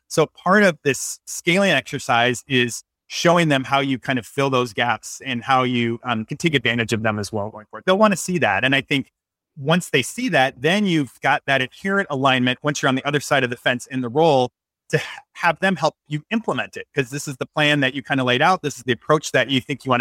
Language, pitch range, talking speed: English, 125-150 Hz, 260 wpm